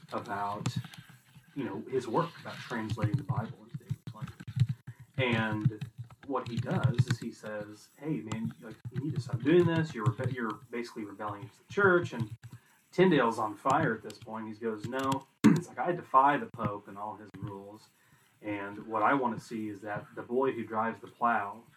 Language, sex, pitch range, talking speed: English, male, 110-135 Hz, 190 wpm